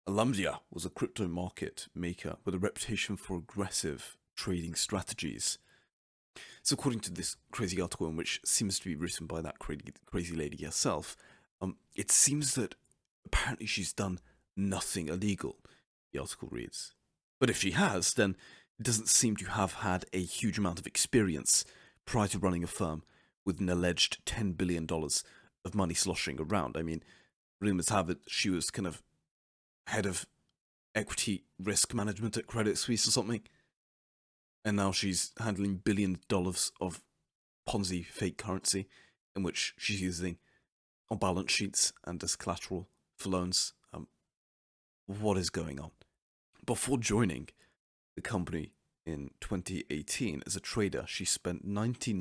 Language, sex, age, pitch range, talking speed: English, male, 30-49, 85-105 Hz, 155 wpm